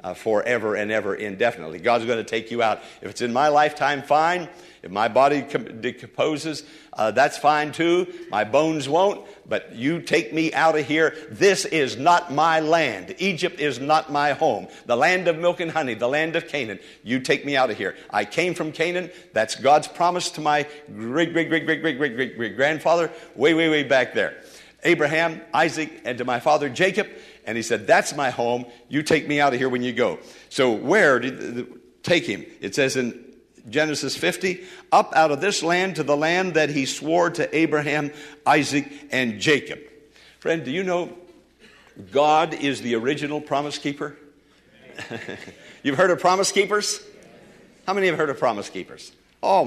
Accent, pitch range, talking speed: American, 130-165 Hz, 185 wpm